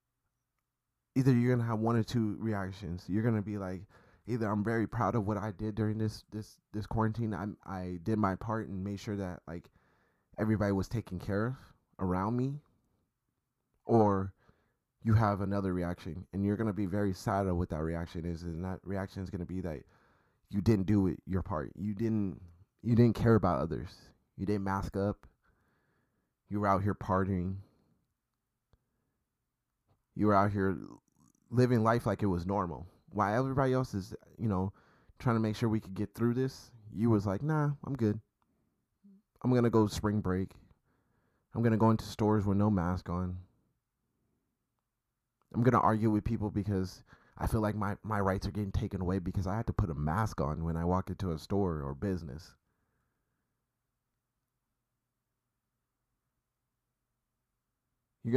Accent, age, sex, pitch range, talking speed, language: American, 20-39, male, 95-120 Hz, 170 wpm, English